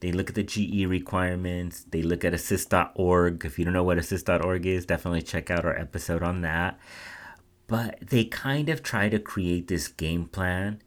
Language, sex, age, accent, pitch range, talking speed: English, male, 30-49, American, 85-105 Hz, 190 wpm